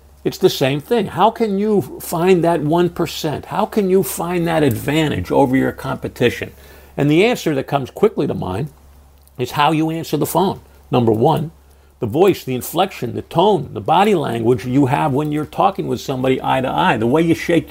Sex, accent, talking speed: male, American, 195 wpm